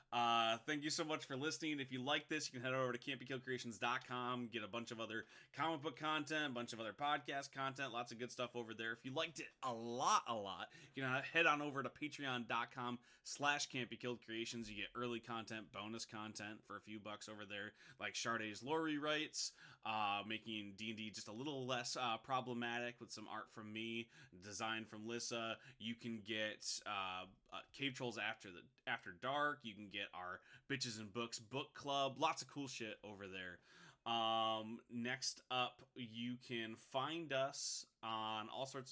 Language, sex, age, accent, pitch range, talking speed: English, male, 20-39, American, 110-135 Hz, 195 wpm